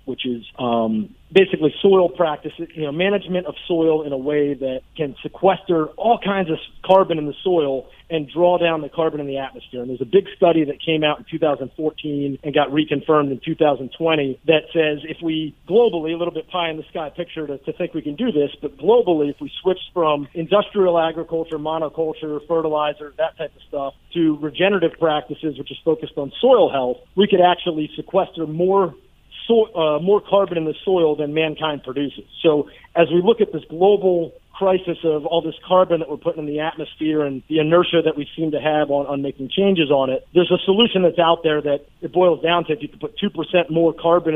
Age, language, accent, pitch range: 40-59, English, American, 145-170 Hz